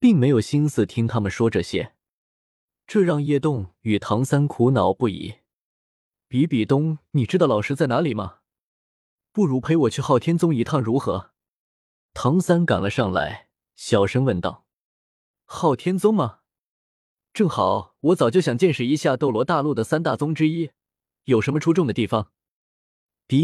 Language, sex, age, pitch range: Chinese, male, 20-39, 115-170 Hz